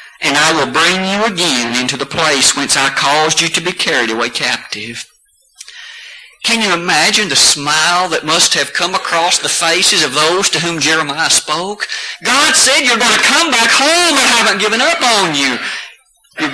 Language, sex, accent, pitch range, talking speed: English, male, American, 145-225 Hz, 185 wpm